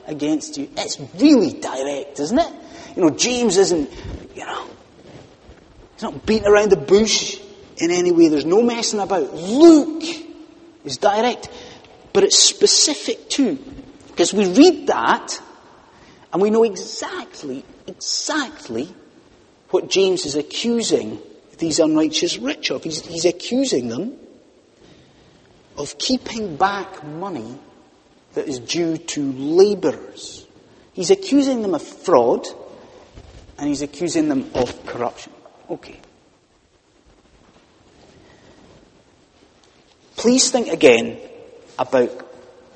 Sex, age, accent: male, 30-49, British